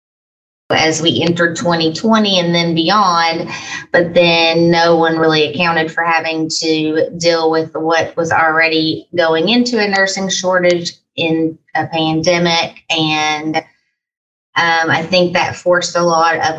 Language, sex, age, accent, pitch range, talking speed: English, female, 30-49, American, 160-185 Hz, 135 wpm